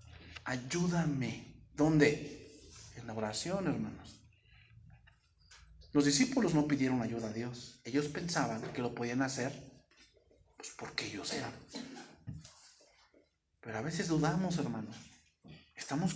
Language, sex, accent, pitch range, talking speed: English, male, Mexican, 110-150 Hz, 110 wpm